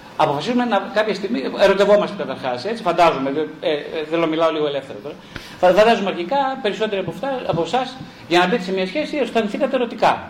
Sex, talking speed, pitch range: male, 170 wpm, 155-235 Hz